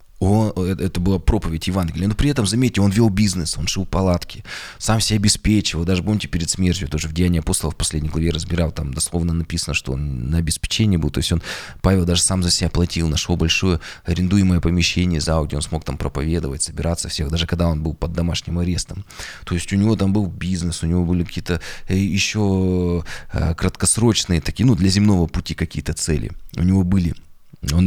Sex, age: male, 20-39